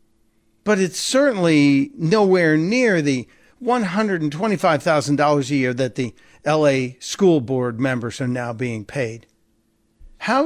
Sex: male